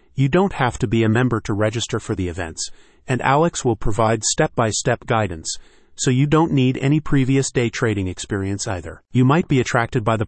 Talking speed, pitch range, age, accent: 200 wpm, 110-135 Hz, 40-59, American